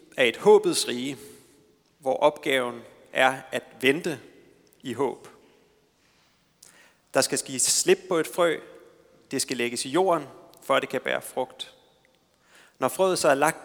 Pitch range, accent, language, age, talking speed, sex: 130-160 Hz, native, Danish, 30-49, 145 wpm, male